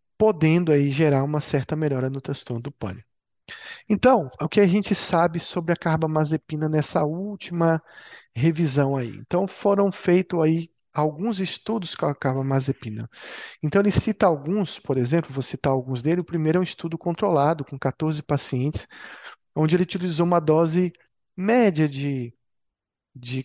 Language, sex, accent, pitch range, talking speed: Portuguese, male, Brazilian, 140-180 Hz, 150 wpm